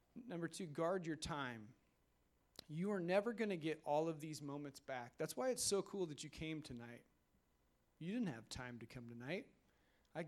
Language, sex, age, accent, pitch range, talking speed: English, male, 30-49, American, 135-170 Hz, 195 wpm